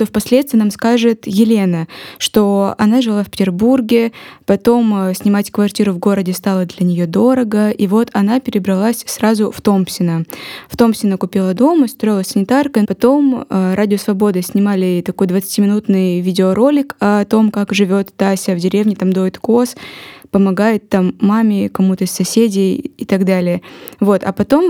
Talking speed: 150 wpm